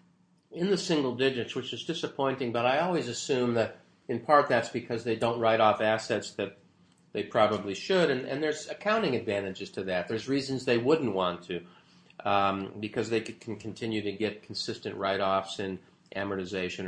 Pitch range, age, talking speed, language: 105-140 Hz, 50-69, 175 wpm, English